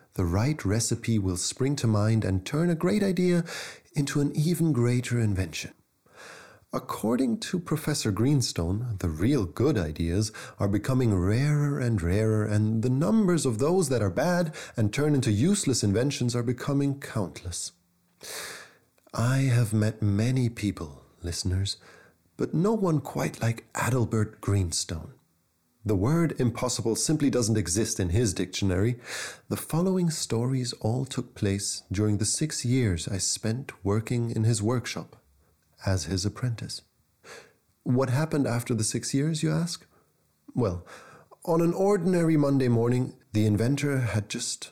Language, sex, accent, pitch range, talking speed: English, male, German, 100-140 Hz, 140 wpm